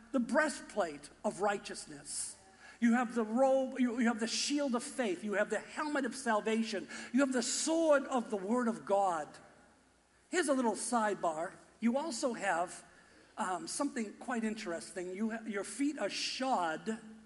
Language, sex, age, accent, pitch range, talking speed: English, male, 50-69, American, 210-270 Hz, 155 wpm